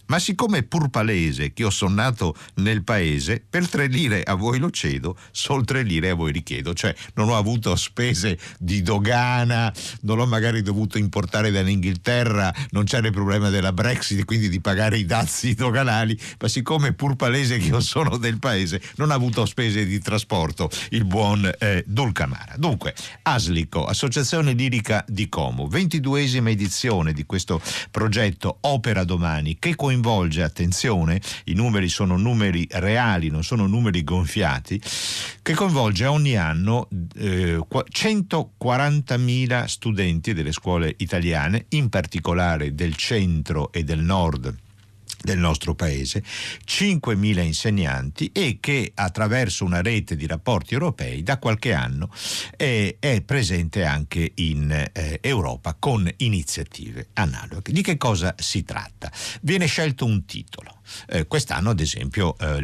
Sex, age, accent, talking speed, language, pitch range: male, 50-69, native, 145 wpm, Italian, 85-120 Hz